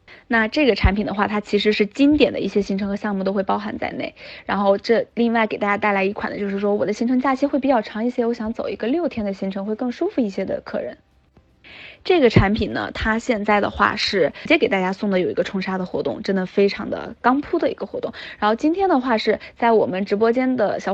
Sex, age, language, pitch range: female, 20-39, Chinese, 195-245 Hz